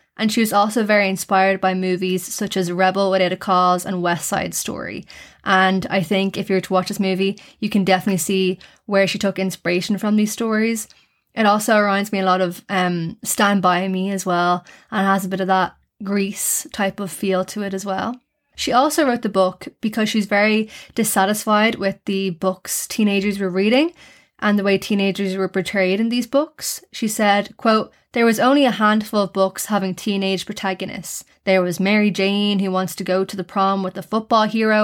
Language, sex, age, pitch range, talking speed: English, female, 20-39, 190-215 Hz, 205 wpm